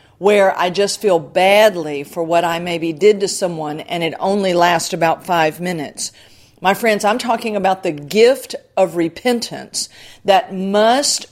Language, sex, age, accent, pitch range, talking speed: English, female, 50-69, American, 170-215 Hz, 160 wpm